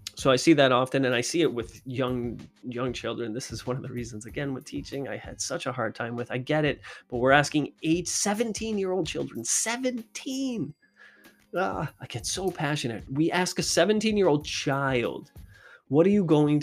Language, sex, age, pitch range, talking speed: English, male, 20-39, 120-160 Hz, 190 wpm